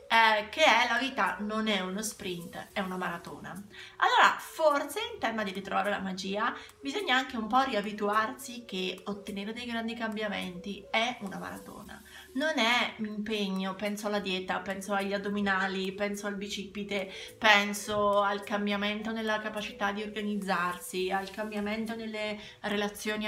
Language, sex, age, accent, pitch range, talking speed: Italian, female, 30-49, native, 195-245 Hz, 145 wpm